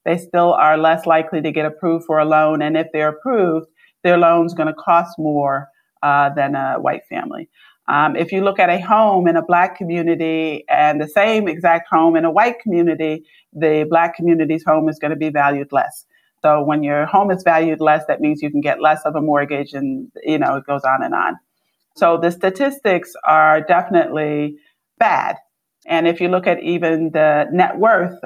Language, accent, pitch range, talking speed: English, American, 155-190 Hz, 200 wpm